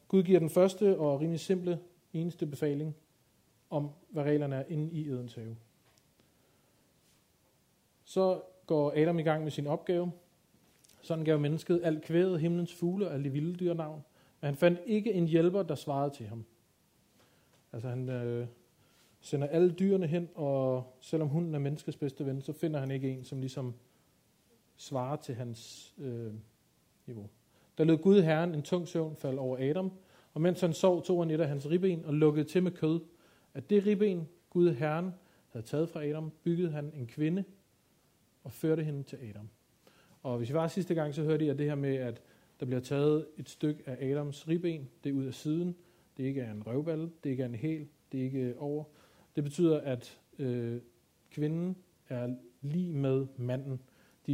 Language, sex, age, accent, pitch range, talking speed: Danish, male, 40-59, native, 135-170 Hz, 185 wpm